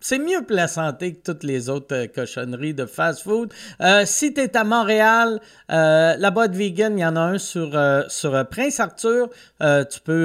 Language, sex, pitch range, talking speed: French, male, 155-220 Hz, 205 wpm